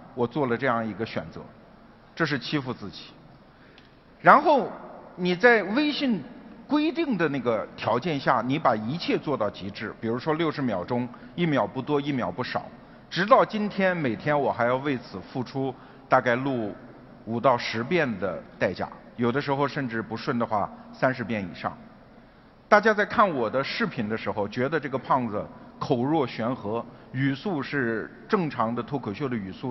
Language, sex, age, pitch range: Chinese, male, 50-69, 115-165 Hz